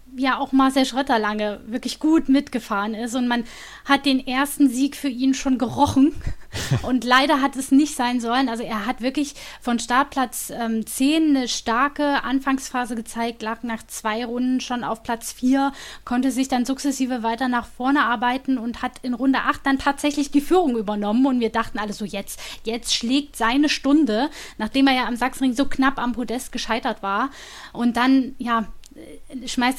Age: 10-29